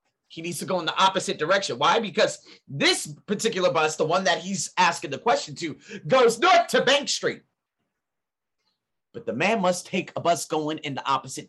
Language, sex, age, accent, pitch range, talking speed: English, male, 30-49, American, 150-215 Hz, 195 wpm